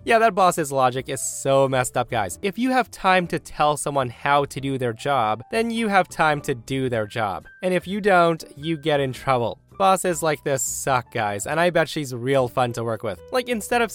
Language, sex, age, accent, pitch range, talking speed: English, male, 20-39, American, 115-155 Hz, 230 wpm